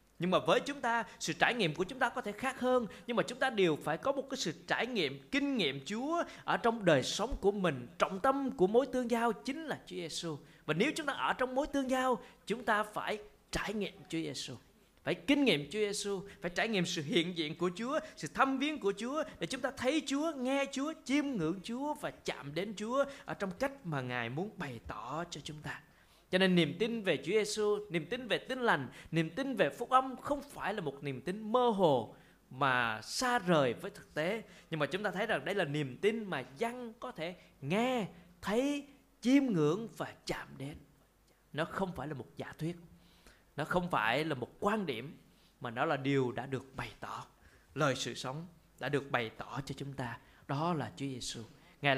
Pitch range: 150-245 Hz